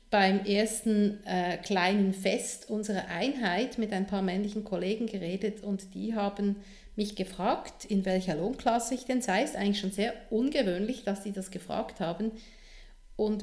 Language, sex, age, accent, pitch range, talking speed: German, female, 50-69, Austrian, 195-230 Hz, 160 wpm